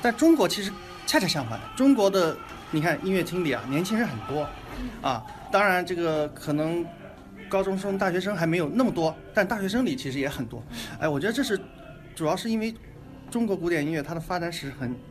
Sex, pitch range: male, 140-185 Hz